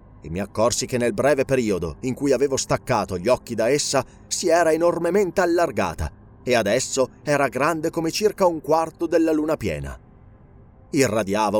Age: 30-49